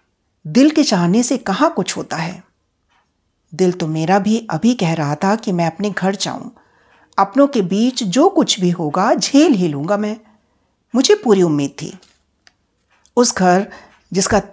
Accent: native